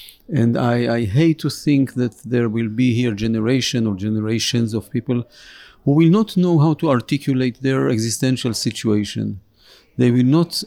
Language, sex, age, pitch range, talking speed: Hebrew, male, 50-69, 115-145 Hz, 165 wpm